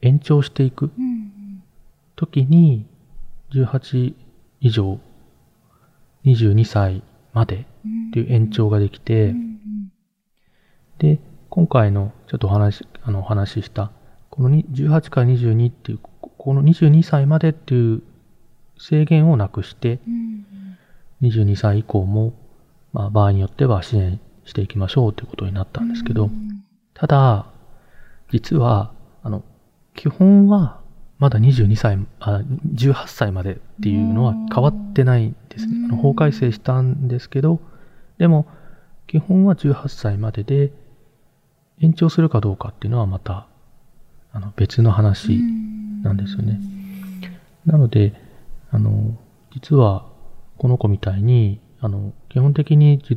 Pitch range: 105-155 Hz